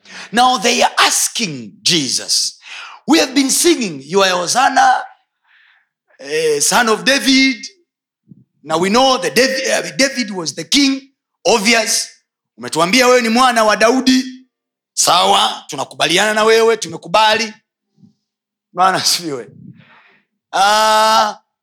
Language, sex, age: Swahili, male, 30-49